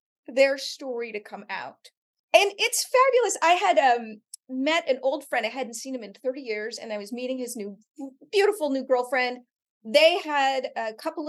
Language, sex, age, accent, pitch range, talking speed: English, female, 30-49, American, 225-305 Hz, 185 wpm